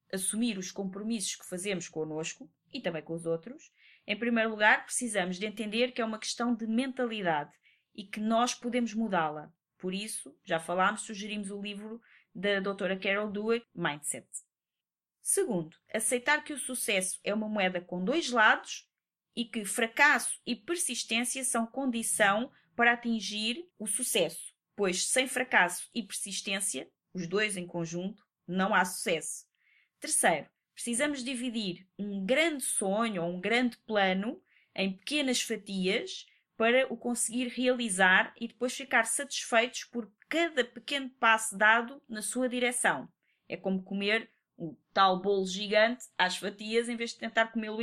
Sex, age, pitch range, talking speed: female, 20-39, 190-240 Hz, 145 wpm